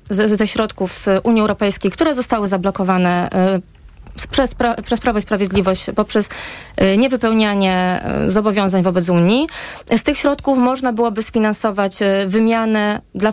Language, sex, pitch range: Polish, female, 200-230 Hz